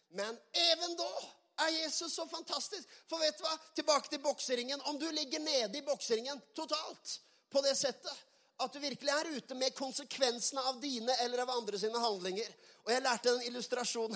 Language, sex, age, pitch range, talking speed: Swedish, male, 30-49, 245-320 Hz, 185 wpm